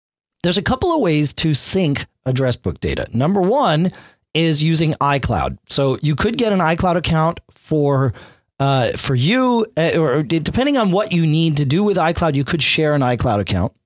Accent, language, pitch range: American, English, 115-175 Hz